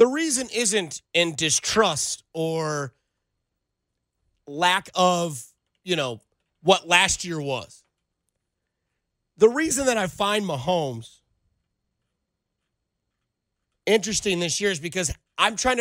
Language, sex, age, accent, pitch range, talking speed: English, male, 30-49, American, 160-225 Hz, 105 wpm